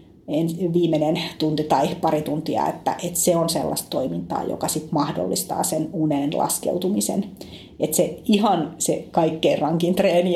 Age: 30-49